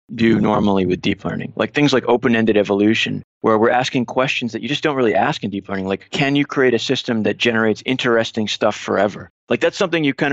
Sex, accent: male, American